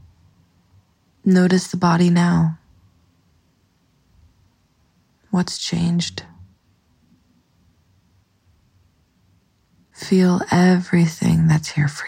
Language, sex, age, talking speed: English, female, 20-39, 55 wpm